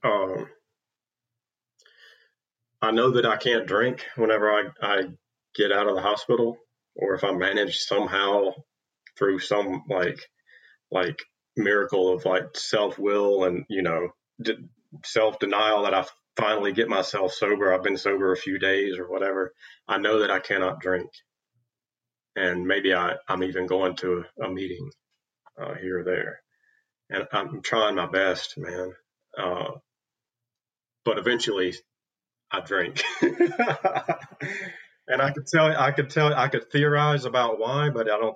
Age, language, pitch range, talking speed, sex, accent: 30-49, English, 95-120 Hz, 145 wpm, male, American